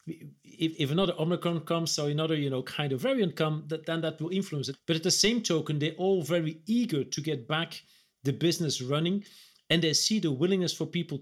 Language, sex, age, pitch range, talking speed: English, male, 40-59, 145-175 Hz, 220 wpm